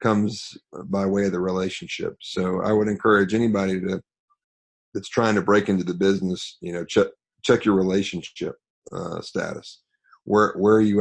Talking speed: 170 wpm